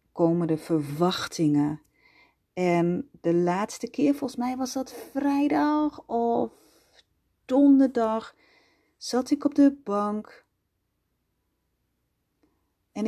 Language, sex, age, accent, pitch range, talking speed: Dutch, female, 40-59, Dutch, 170-225 Hz, 90 wpm